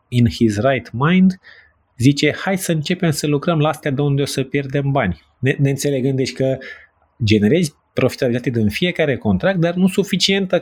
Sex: male